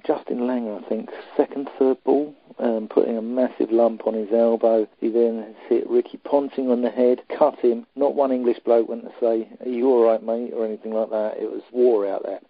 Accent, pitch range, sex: British, 120-145 Hz, male